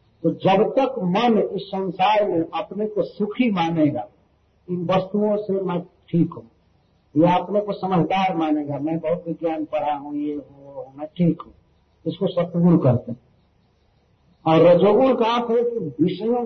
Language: Hindi